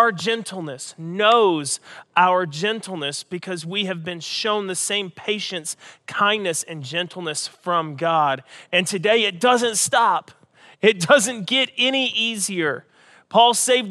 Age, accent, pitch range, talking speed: 30-49, American, 170-225 Hz, 130 wpm